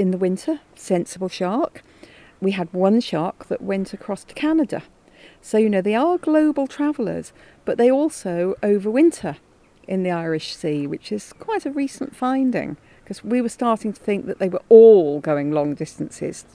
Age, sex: 40-59, female